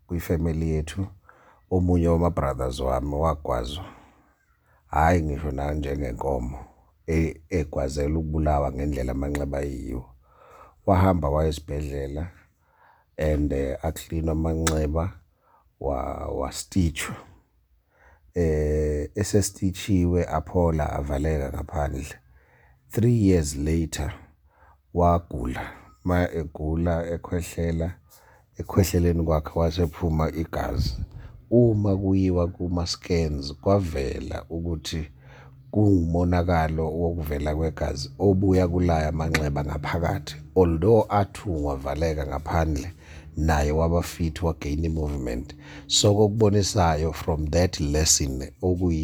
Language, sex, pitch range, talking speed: English, male, 75-90 Hz, 85 wpm